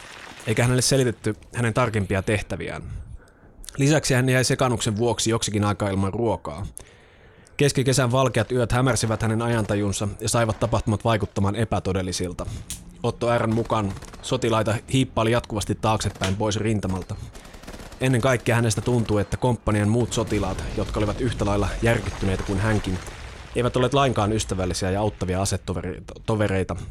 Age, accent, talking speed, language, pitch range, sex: 20-39, native, 125 wpm, Finnish, 100-125 Hz, male